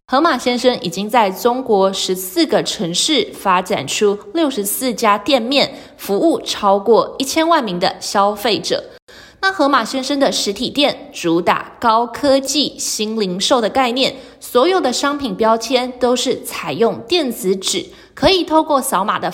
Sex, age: female, 20-39